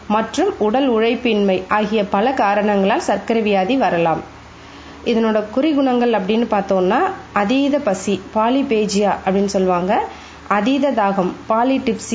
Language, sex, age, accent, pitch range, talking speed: Tamil, female, 20-39, native, 205-255 Hz, 105 wpm